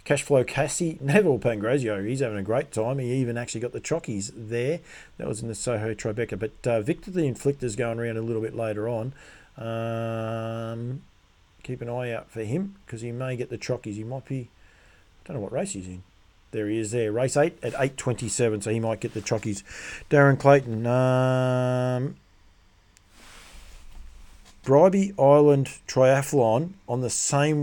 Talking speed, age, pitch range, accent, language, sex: 175 wpm, 40-59, 105-135 Hz, Australian, English, male